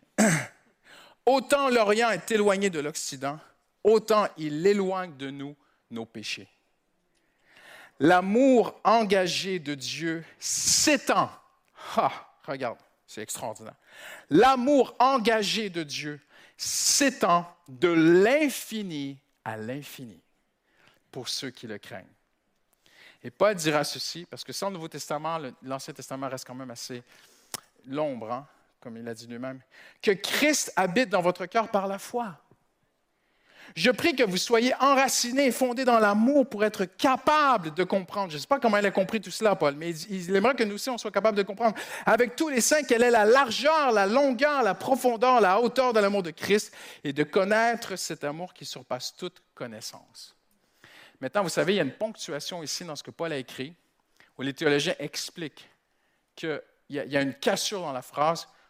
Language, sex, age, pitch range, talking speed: French, male, 50-69, 150-235 Hz, 165 wpm